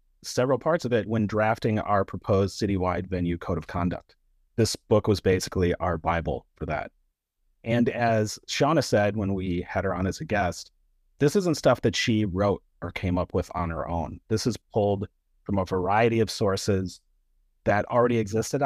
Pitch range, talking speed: 85-110 Hz, 185 wpm